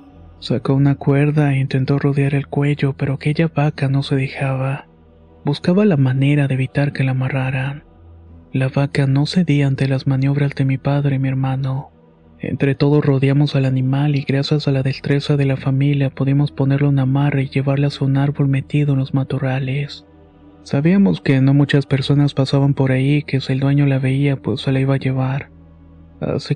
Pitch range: 130-140 Hz